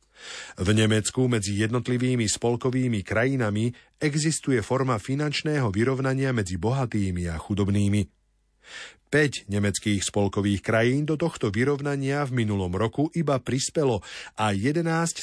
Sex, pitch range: male, 100-135 Hz